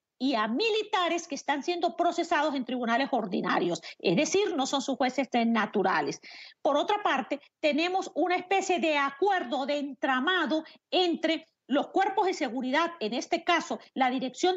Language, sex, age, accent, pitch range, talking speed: English, female, 40-59, American, 270-350 Hz, 150 wpm